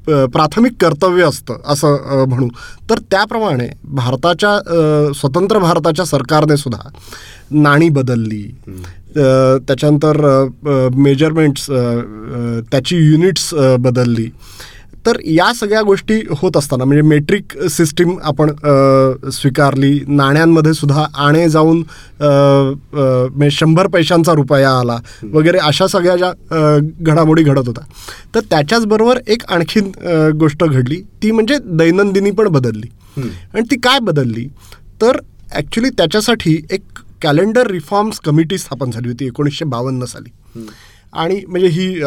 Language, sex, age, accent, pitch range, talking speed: Marathi, male, 20-39, native, 130-165 Hz, 110 wpm